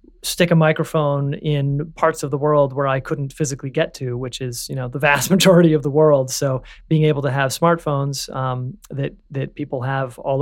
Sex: male